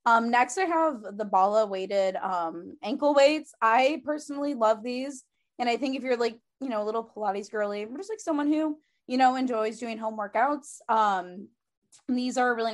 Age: 20-39